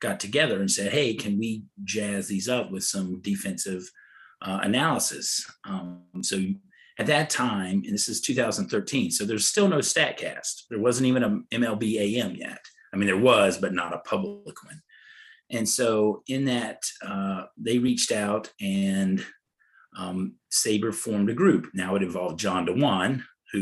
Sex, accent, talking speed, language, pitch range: male, American, 165 wpm, English, 95-125 Hz